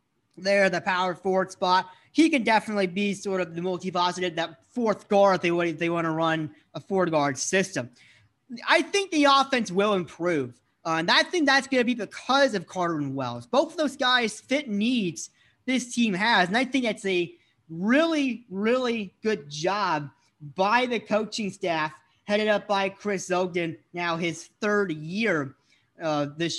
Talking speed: 180 wpm